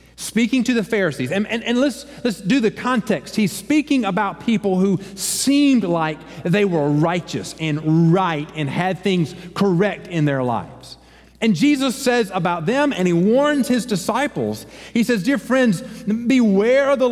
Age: 40-59